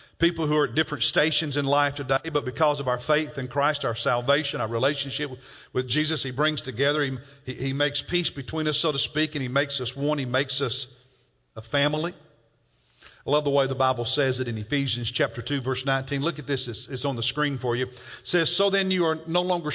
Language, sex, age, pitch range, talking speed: English, male, 50-69, 130-165 Hz, 235 wpm